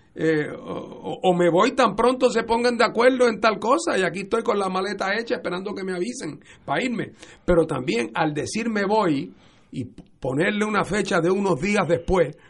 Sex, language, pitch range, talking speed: male, Spanish, 125-185 Hz, 195 wpm